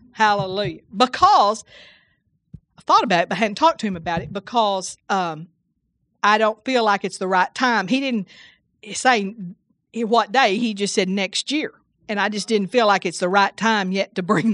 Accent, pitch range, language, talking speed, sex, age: American, 200-275 Hz, English, 195 wpm, female, 50-69